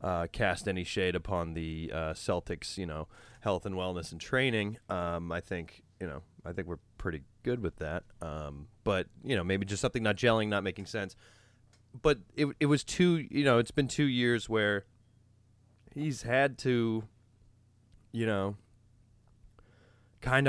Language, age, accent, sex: English, 30-49, American, male